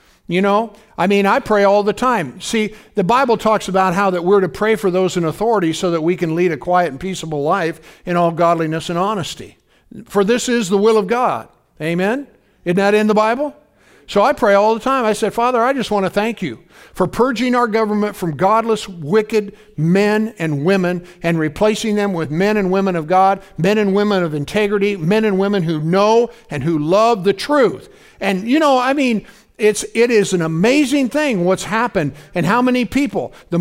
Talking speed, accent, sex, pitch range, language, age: 210 wpm, American, male, 185-235 Hz, English, 60-79